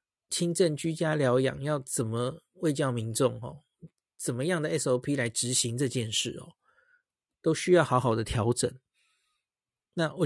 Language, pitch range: Chinese, 130-170 Hz